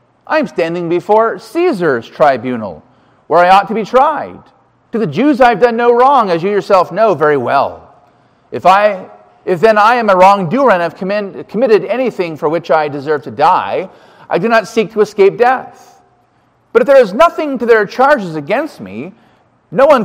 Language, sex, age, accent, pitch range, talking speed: English, male, 40-59, American, 145-230 Hz, 190 wpm